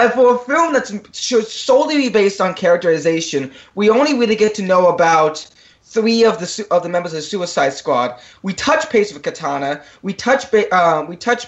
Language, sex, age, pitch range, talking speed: English, male, 20-39, 165-235 Hz, 210 wpm